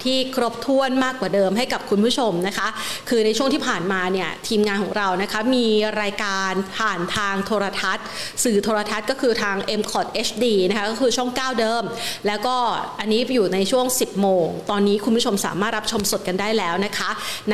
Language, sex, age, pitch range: Thai, female, 30-49, 190-230 Hz